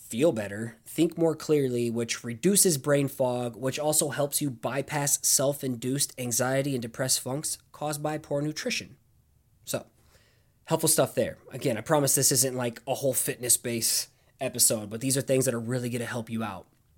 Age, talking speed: 20-39, 175 wpm